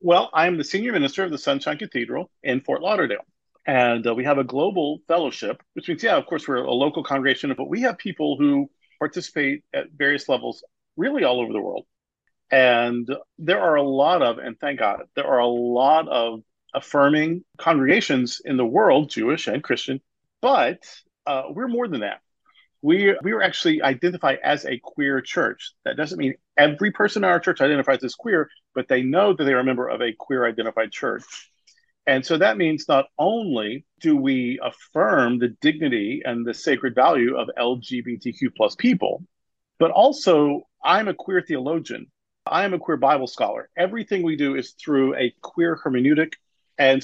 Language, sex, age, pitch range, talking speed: English, male, 50-69, 130-185 Hz, 180 wpm